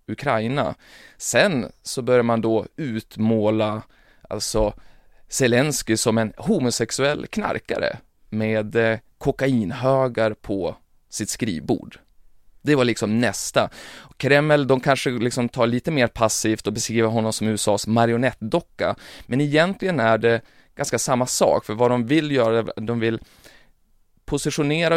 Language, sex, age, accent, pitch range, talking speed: Swedish, male, 20-39, native, 110-130 Hz, 125 wpm